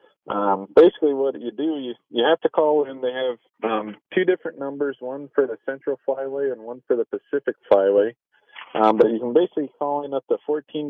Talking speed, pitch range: 210 wpm, 115-155 Hz